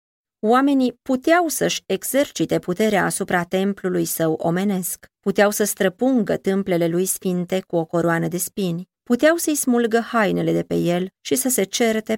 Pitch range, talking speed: 175-225 Hz, 155 wpm